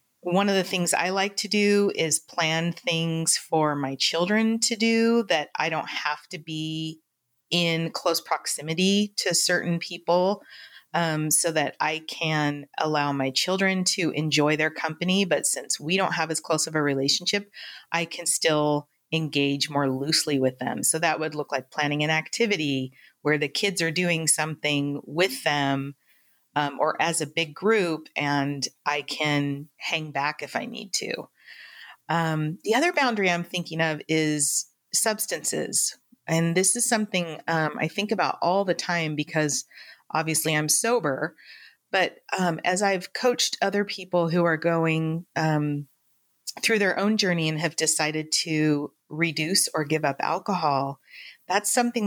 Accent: American